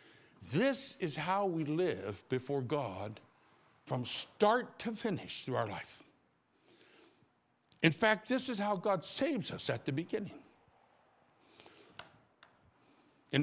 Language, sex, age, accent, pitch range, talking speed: English, male, 60-79, American, 155-235 Hz, 115 wpm